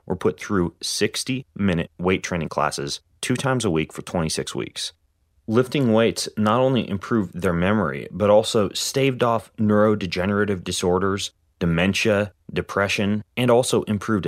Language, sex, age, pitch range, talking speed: English, male, 30-49, 90-110 Hz, 135 wpm